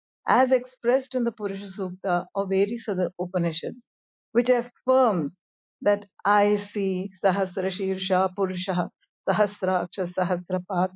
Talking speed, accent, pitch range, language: 110 wpm, Indian, 185-255 Hz, English